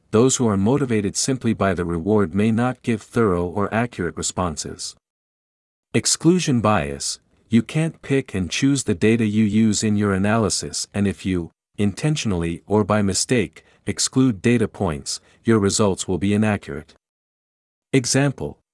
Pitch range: 90-120 Hz